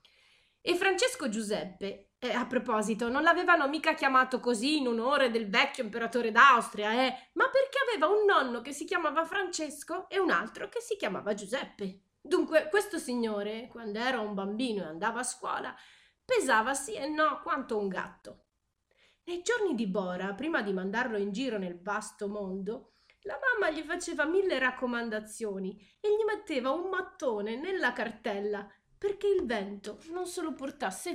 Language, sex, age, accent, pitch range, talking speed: Italian, female, 30-49, native, 220-345 Hz, 160 wpm